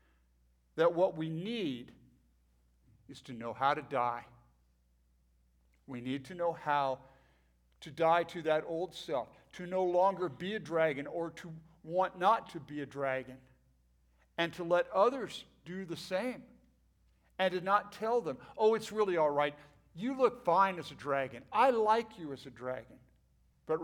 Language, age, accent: English, 50-69, American